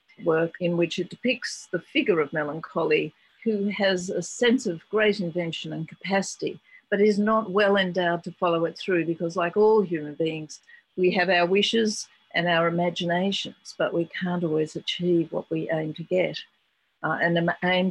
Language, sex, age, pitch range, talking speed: English, female, 50-69, 170-215 Hz, 175 wpm